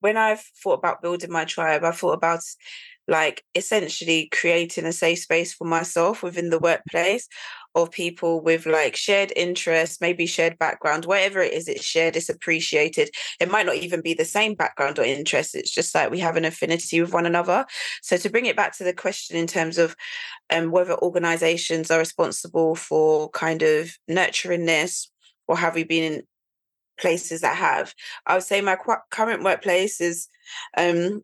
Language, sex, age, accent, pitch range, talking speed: English, female, 20-39, British, 165-210 Hz, 180 wpm